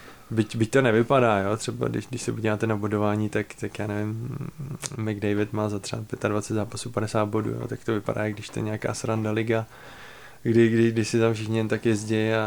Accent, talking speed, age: native, 220 wpm, 20-39